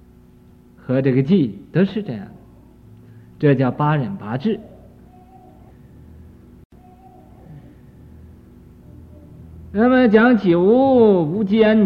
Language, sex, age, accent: Chinese, male, 50-69, native